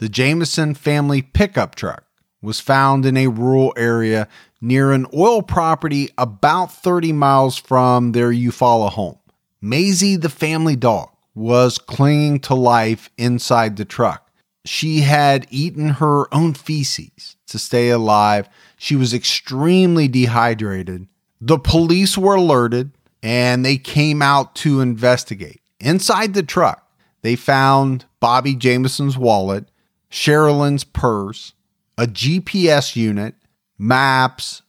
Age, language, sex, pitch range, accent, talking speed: 40-59, English, male, 120-160 Hz, American, 120 wpm